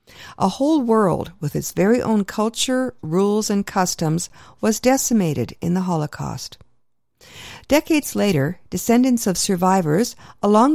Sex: female